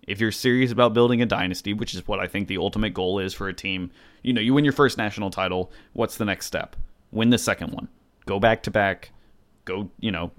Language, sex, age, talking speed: English, male, 30-49, 230 wpm